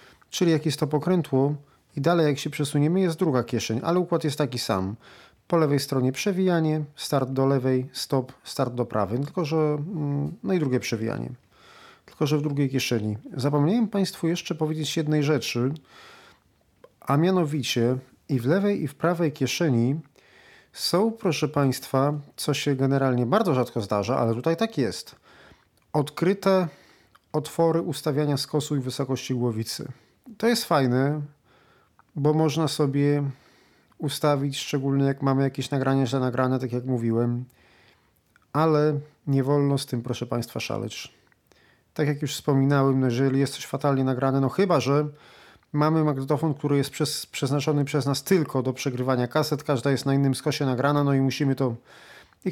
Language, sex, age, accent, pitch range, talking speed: Polish, male, 40-59, native, 130-155 Hz, 155 wpm